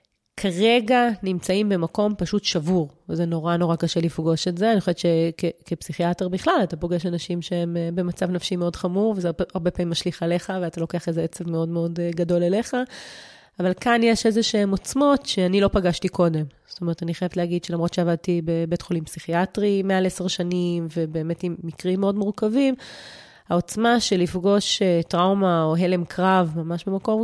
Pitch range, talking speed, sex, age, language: 170-195 Hz, 165 wpm, female, 30-49, Hebrew